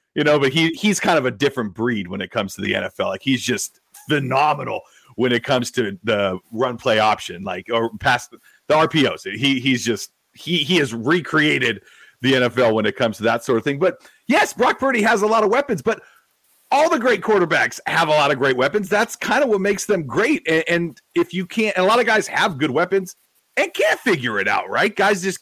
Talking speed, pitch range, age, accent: 230 wpm, 135-215 Hz, 40-59, American